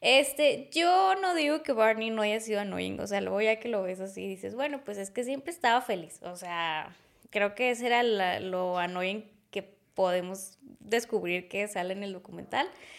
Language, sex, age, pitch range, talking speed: Spanish, female, 20-39, 200-260 Hz, 205 wpm